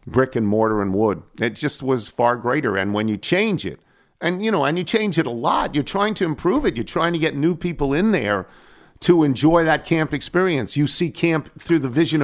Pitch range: 115-160 Hz